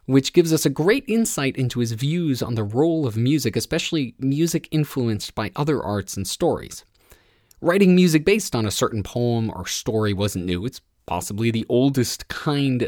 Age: 20-39